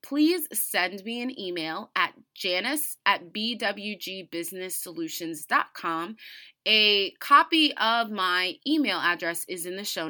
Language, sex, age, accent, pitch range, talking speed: English, female, 20-39, American, 185-245 Hz, 115 wpm